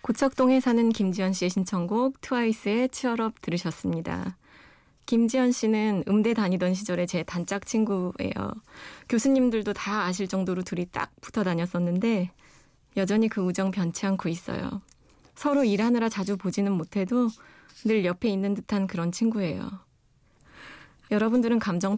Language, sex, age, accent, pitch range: Korean, female, 20-39, native, 180-225 Hz